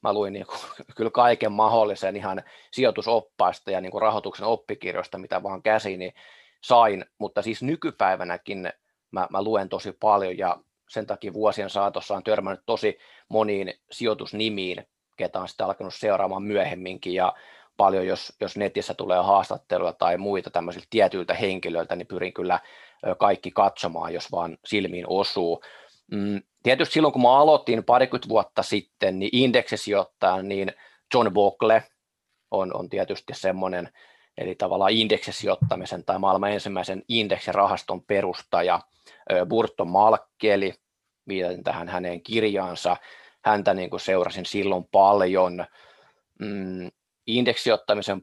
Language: Finnish